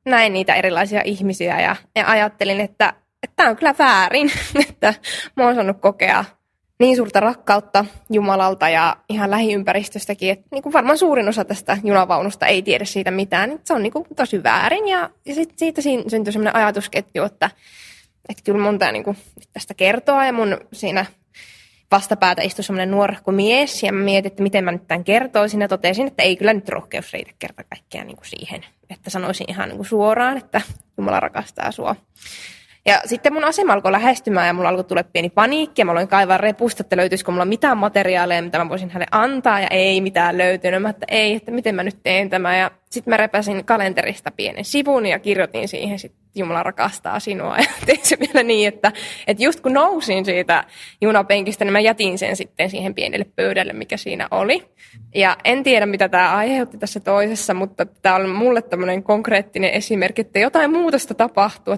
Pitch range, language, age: 190-230 Hz, Finnish, 20-39